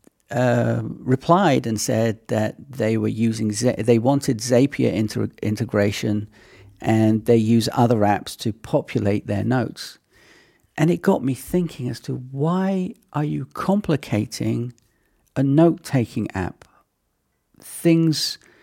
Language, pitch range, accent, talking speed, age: English, 115-155 Hz, British, 125 wpm, 50-69